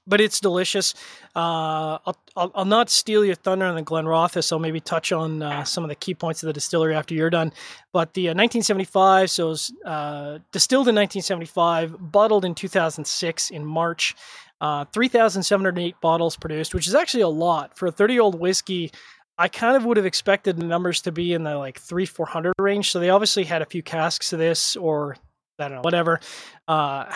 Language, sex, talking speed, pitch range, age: English, male, 205 wpm, 160-190 Hz, 20-39